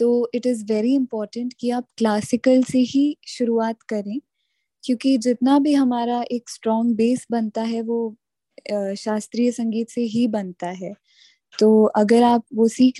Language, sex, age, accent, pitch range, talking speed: Hindi, female, 10-29, native, 215-250 Hz, 150 wpm